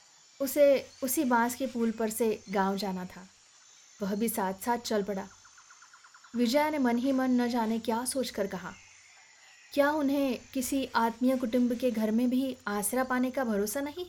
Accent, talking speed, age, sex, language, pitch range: native, 170 wpm, 20-39, female, Hindi, 205-270 Hz